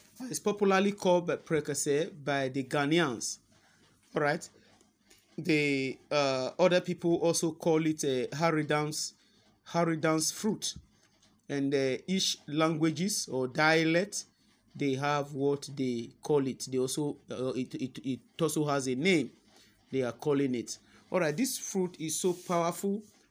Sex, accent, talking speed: male, Nigerian, 140 wpm